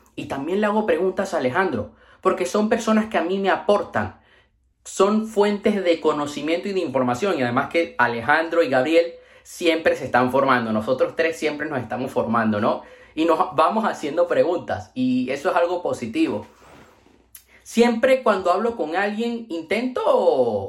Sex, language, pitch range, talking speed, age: male, Spanish, 150-225 Hz, 160 wpm, 30-49